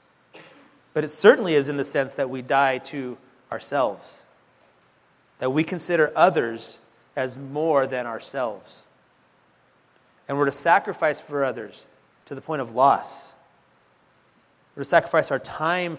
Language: English